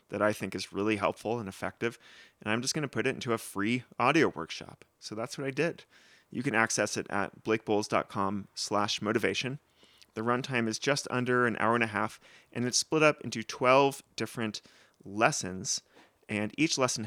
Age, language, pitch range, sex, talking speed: 30-49, English, 105-125 Hz, male, 185 wpm